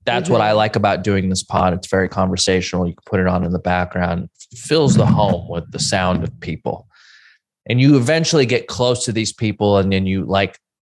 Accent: American